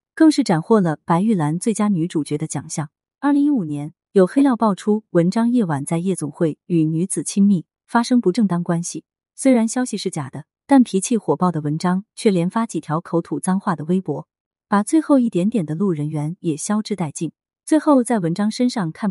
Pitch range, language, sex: 160-225 Hz, Chinese, female